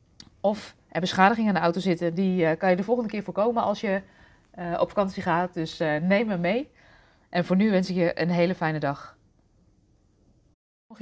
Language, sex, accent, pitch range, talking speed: Dutch, female, Dutch, 160-200 Hz, 195 wpm